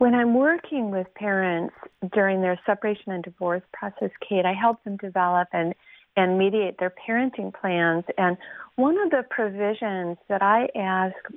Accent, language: American, English